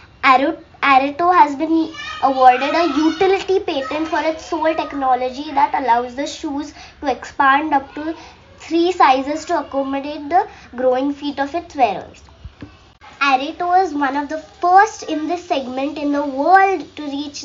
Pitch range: 265-325 Hz